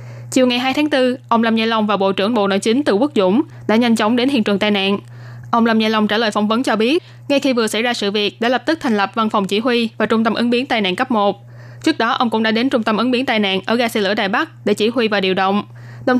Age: 20-39